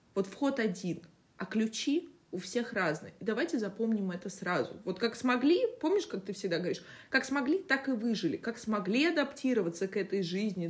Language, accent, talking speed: Russian, native, 180 wpm